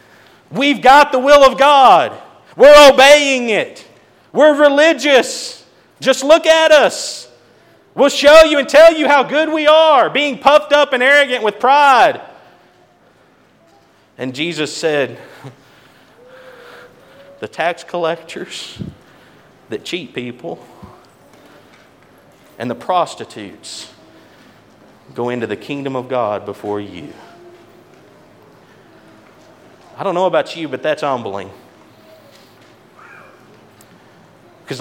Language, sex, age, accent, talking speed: English, male, 40-59, American, 105 wpm